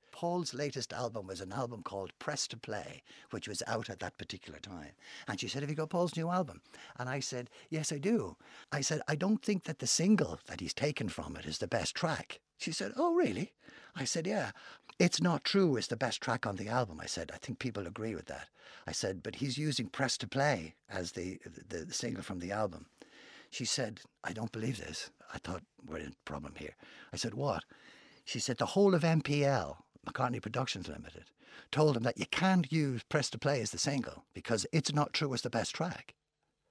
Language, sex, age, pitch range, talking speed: English, male, 60-79, 115-190 Hz, 220 wpm